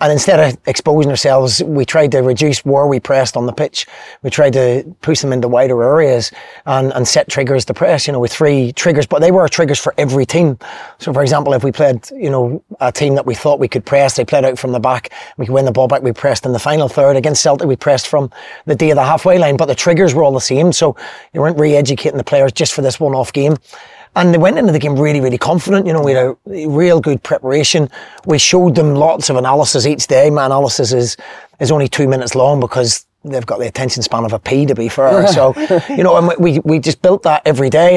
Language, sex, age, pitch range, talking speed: English, male, 30-49, 130-160 Hz, 255 wpm